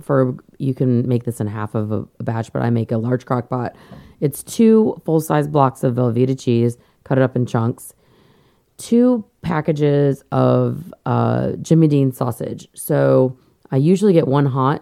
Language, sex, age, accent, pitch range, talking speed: English, female, 30-49, American, 125-150 Hz, 170 wpm